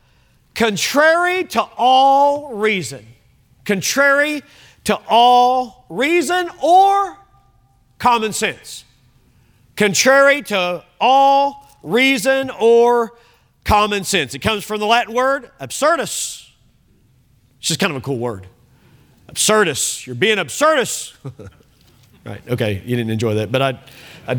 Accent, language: American, English